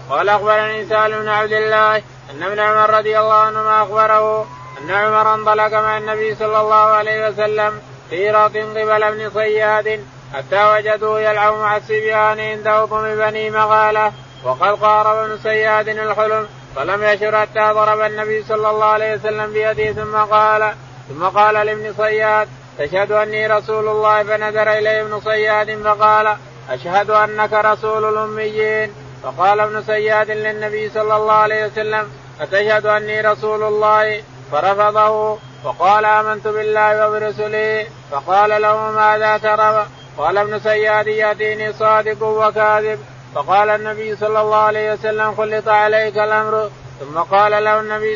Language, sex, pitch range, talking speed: Arabic, male, 210-215 Hz, 140 wpm